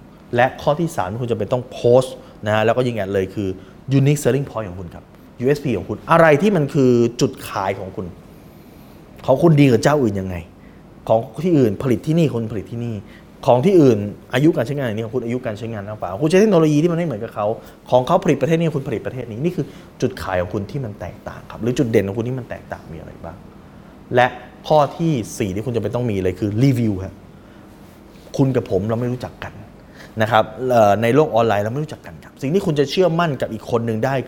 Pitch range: 110-160 Hz